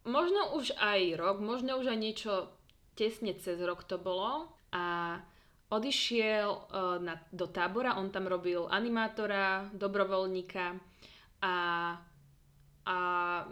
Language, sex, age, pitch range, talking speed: Slovak, female, 20-39, 180-215 Hz, 105 wpm